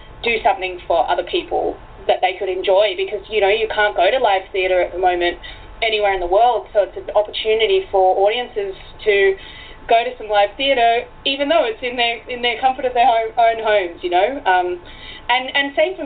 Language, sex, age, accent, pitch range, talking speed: English, female, 20-39, Australian, 195-250 Hz, 215 wpm